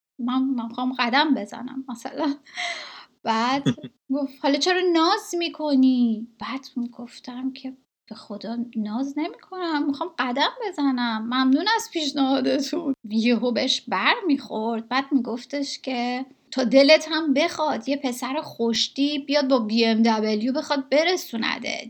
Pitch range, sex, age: 235-290 Hz, female, 10-29